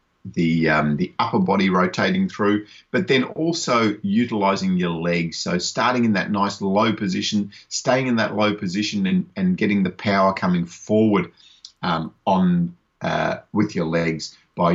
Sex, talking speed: male, 160 wpm